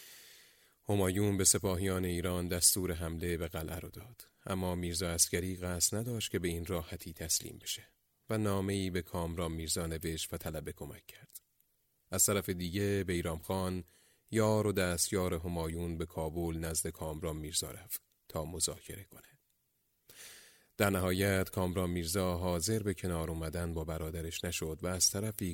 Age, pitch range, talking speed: 30-49, 85-95 Hz, 150 wpm